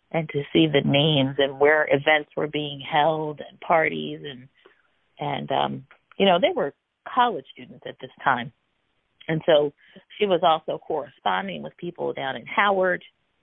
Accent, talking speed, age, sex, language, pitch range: American, 160 wpm, 40-59, female, English, 135-155 Hz